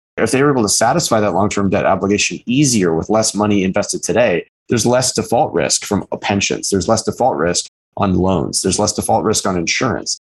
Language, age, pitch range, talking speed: English, 30-49, 100-130 Hz, 195 wpm